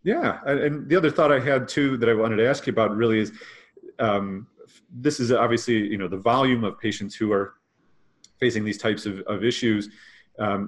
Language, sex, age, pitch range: English, male, 30-49, 105-125 Hz